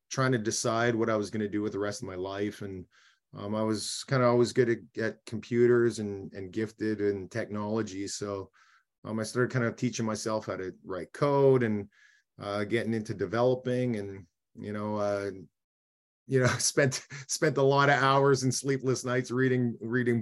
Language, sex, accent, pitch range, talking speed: English, male, American, 105-125 Hz, 190 wpm